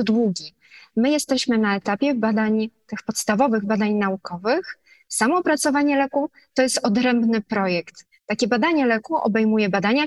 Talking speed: 130 wpm